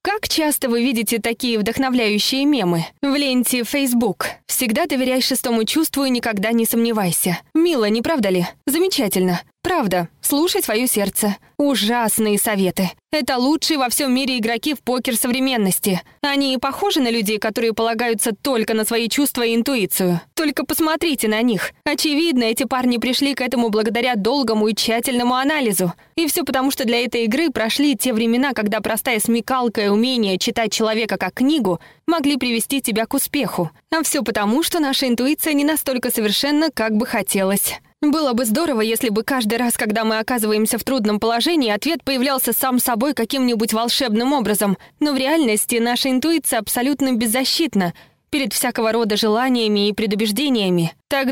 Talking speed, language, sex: 160 wpm, Russian, female